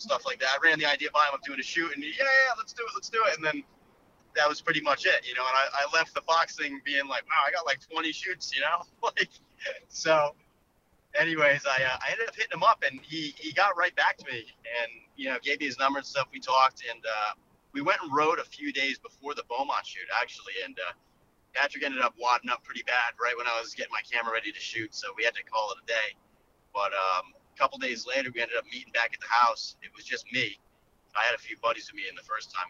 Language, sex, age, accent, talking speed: English, male, 30-49, American, 275 wpm